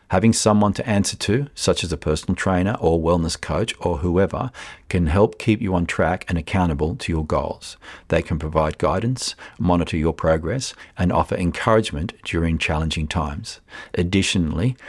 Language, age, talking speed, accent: English, 50-69, 160 wpm, Australian